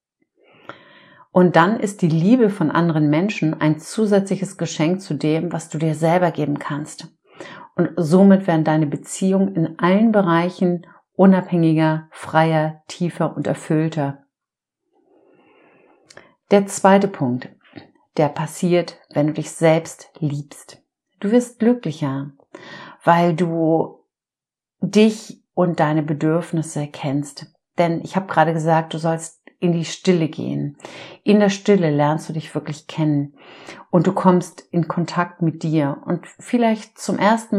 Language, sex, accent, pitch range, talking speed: German, female, German, 160-195 Hz, 130 wpm